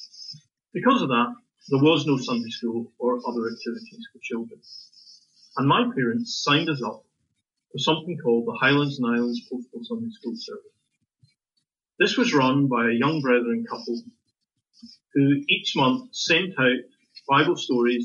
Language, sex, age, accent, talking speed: English, male, 40-59, British, 150 wpm